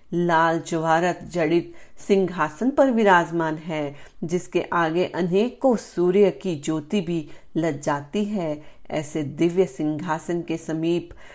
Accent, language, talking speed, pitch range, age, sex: native, Hindi, 115 wpm, 165-205 Hz, 40-59, female